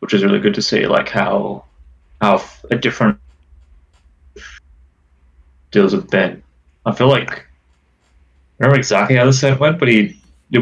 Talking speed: 155 wpm